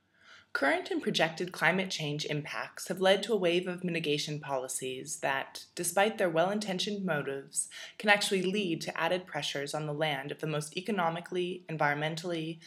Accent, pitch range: American, 150-185 Hz